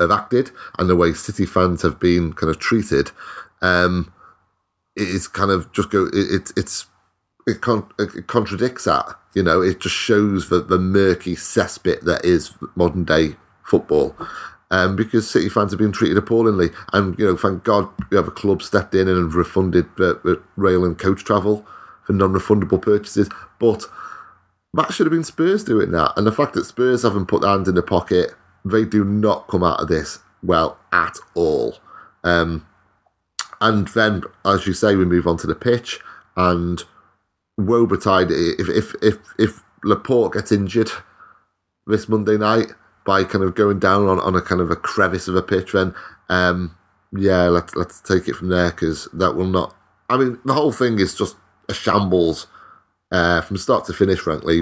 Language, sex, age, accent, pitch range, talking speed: English, male, 30-49, British, 90-105 Hz, 180 wpm